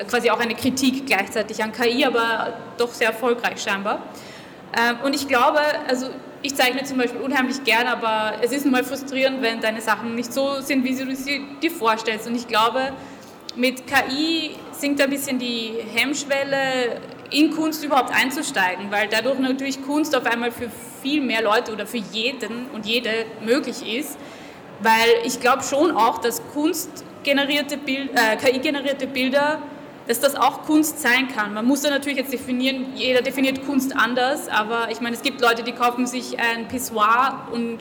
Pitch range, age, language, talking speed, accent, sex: 235-280 Hz, 20-39, German, 170 wpm, German, female